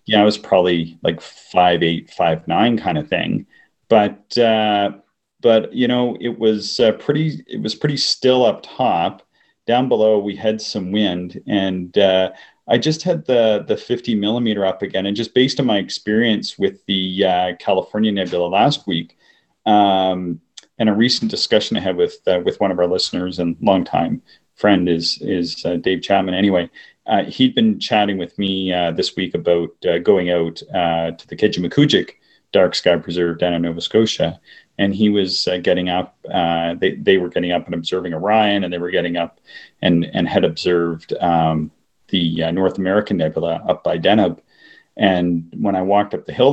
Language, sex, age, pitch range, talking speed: English, male, 30-49, 90-110 Hz, 185 wpm